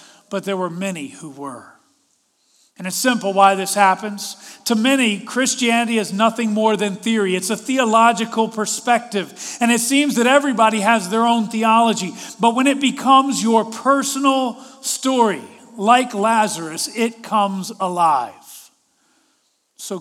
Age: 40-59